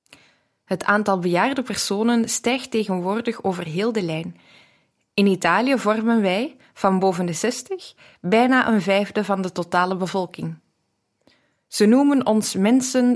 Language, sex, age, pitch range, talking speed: Dutch, female, 20-39, 185-235 Hz, 130 wpm